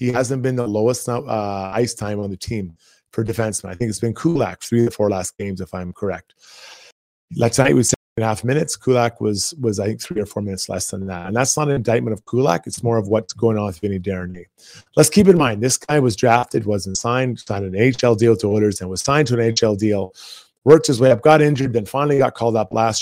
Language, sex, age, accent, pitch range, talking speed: English, male, 30-49, American, 105-130 Hz, 255 wpm